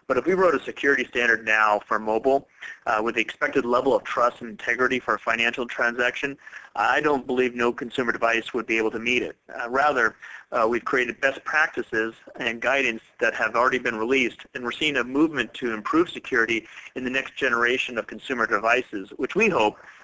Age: 40-59